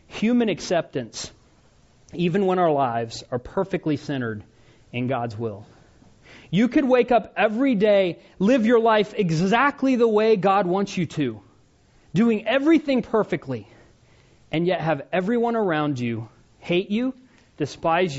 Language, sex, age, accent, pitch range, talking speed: English, male, 30-49, American, 120-185 Hz, 130 wpm